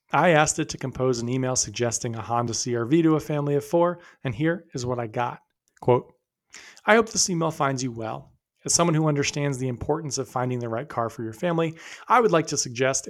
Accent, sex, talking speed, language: American, male, 225 wpm, English